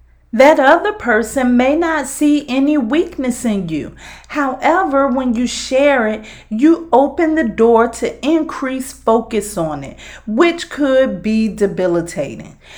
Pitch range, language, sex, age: 215-295 Hz, English, female, 40-59